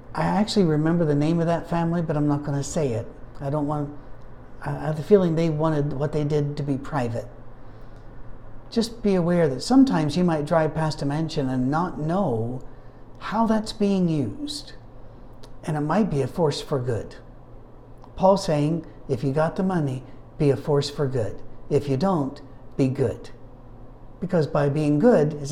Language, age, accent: English, 60-79, American